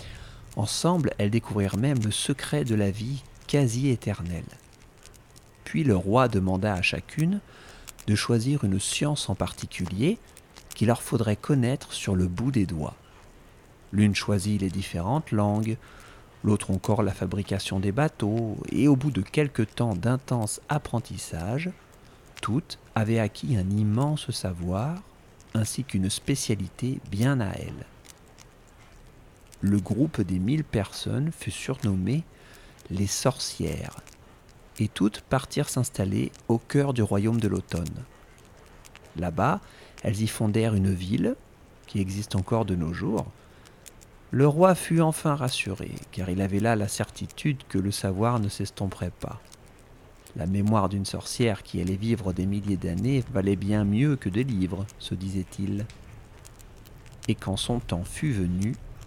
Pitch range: 100-130 Hz